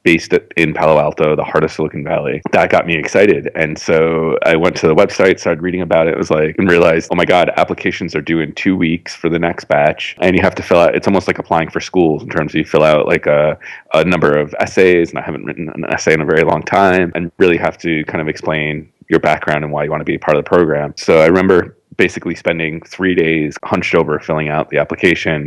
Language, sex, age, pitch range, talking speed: English, male, 30-49, 80-90 Hz, 255 wpm